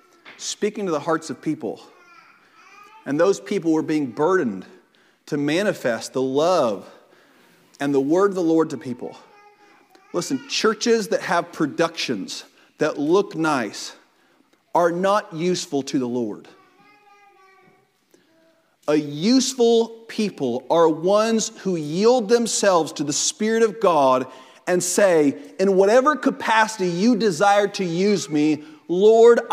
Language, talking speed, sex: English, 125 wpm, male